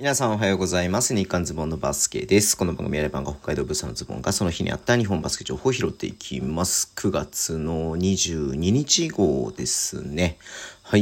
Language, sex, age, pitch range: Japanese, male, 40-59, 75-95 Hz